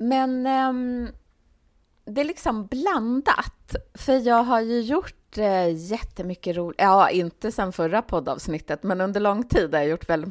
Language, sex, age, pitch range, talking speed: Swedish, female, 30-49, 165-235 Hz, 155 wpm